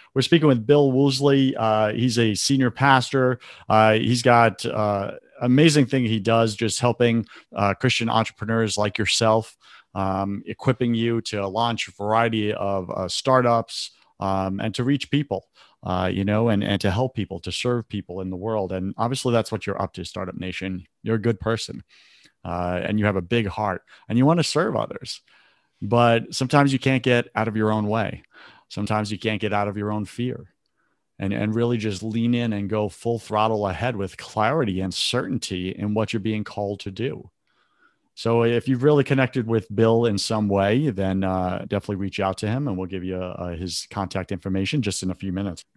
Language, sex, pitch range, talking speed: English, male, 100-125 Hz, 200 wpm